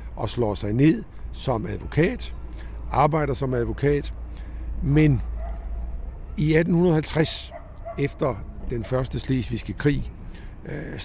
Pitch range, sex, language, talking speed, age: 100-145 Hz, male, Danish, 100 wpm, 60-79